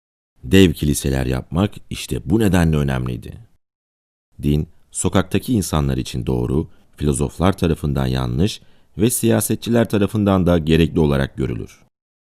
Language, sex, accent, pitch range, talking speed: Turkish, male, native, 70-95 Hz, 110 wpm